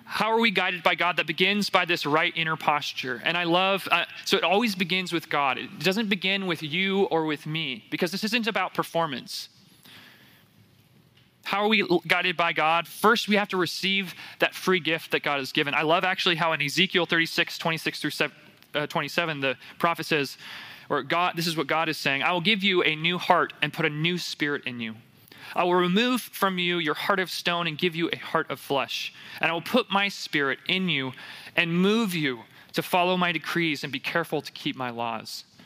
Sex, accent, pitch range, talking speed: male, American, 160-190 Hz, 215 wpm